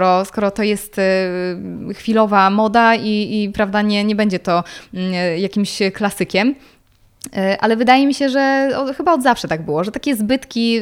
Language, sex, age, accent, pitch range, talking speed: Polish, female, 20-39, native, 200-265 Hz, 150 wpm